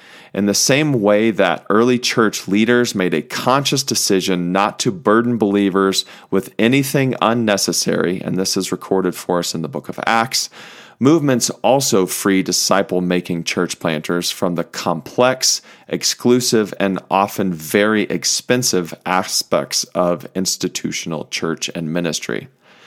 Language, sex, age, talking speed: English, male, 40-59, 130 wpm